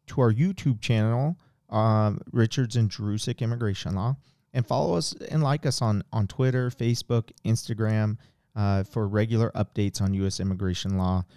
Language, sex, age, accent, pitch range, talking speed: English, male, 30-49, American, 105-135 Hz, 155 wpm